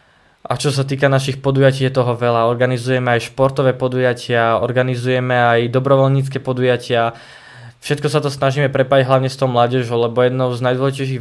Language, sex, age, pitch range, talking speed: Slovak, male, 20-39, 125-135 Hz, 160 wpm